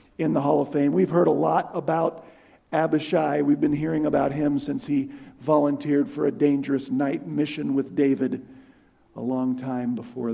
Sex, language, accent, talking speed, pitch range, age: male, English, American, 175 wpm, 170-235 Hz, 50-69